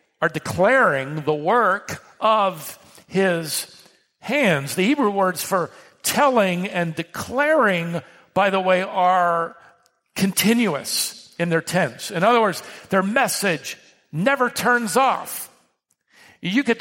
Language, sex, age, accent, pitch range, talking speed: English, male, 50-69, American, 175-235 Hz, 115 wpm